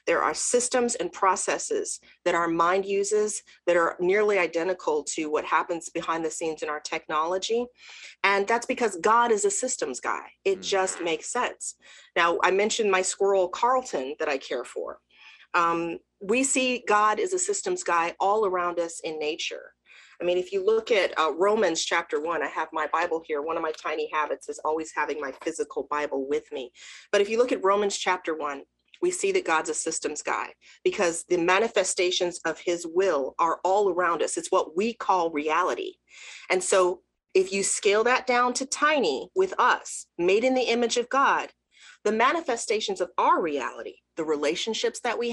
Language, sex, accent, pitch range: English, female, American, 175-265 Hz